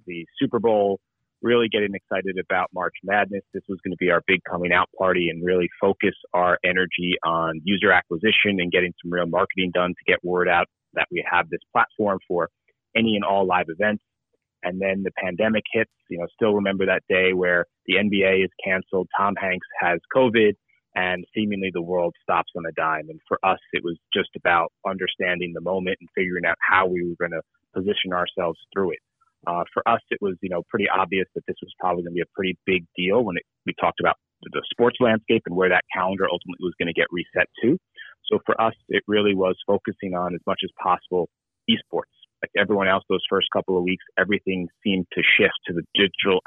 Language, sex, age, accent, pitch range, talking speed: English, male, 30-49, American, 90-100 Hz, 210 wpm